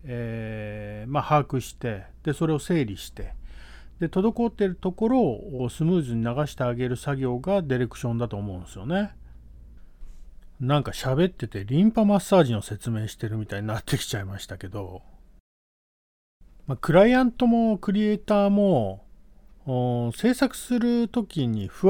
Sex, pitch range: male, 110-175 Hz